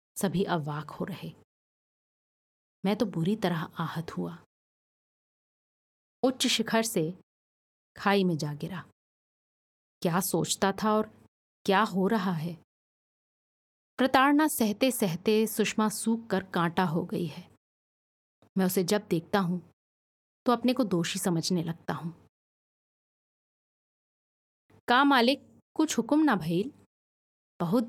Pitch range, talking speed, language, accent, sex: 170-220 Hz, 115 wpm, Hindi, native, female